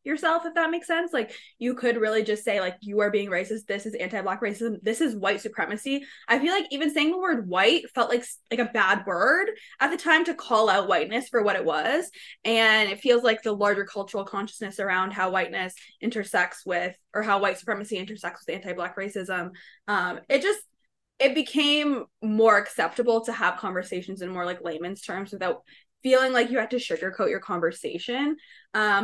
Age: 20-39